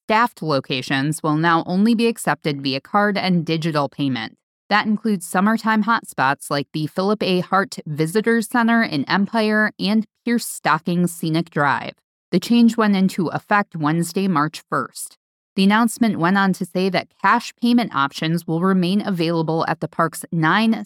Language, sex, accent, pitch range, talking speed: English, female, American, 155-210 Hz, 160 wpm